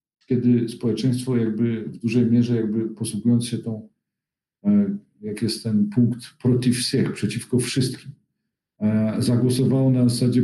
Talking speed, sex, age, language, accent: 120 wpm, male, 50-69, Polish, native